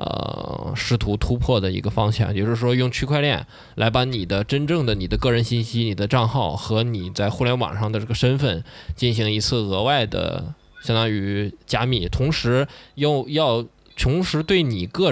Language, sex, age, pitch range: Chinese, male, 20-39, 105-125 Hz